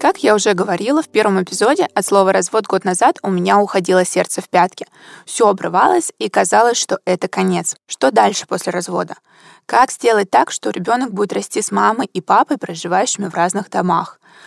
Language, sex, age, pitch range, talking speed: Russian, female, 20-39, 190-230 Hz, 190 wpm